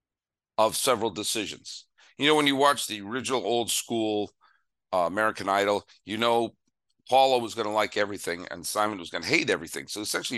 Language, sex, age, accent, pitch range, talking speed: English, male, 50-69, American, 100-125 Hz, 185 wpm